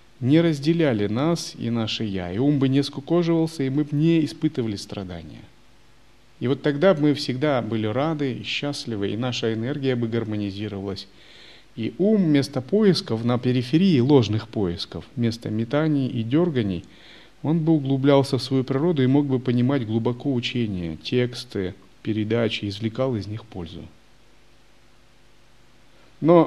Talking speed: 140 wpm